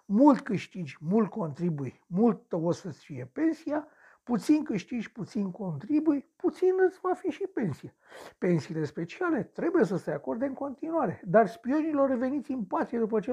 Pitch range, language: 160-245 Hz, Romanian